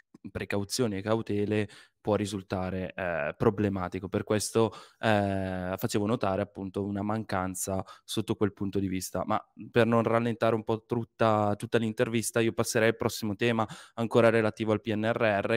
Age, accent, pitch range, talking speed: 20-39, native, 105-120 Hz, 145 wpm